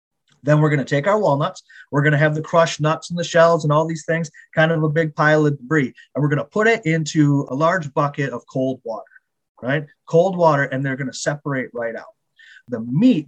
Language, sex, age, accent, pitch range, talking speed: English, male, 30-49, American, 140-170 Hz, 220 wpm